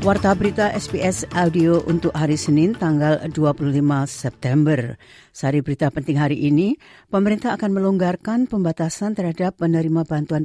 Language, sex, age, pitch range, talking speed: Indonesian, female, 50-69, 145-180 Hz, 125 wpm